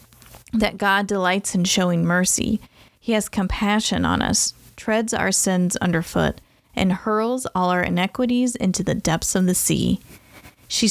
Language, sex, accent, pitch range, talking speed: English, female, American, 180-220 Hz, 150 wpm